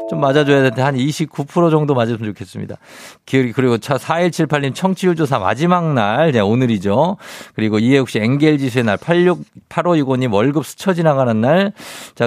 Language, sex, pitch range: Korean, male, 110-160 Hz